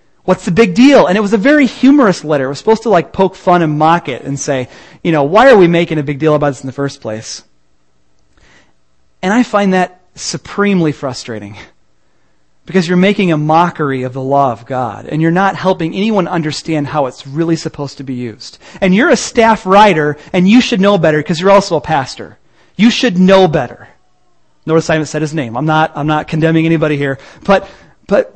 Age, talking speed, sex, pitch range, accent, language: 30-49, 210 wpm, male, 135-195 Hz, American, English